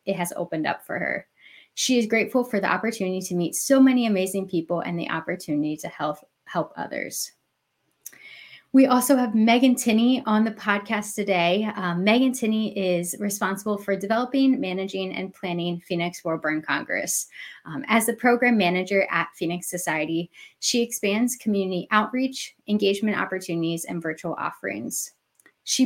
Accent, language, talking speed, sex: American, English, 150 wpm, female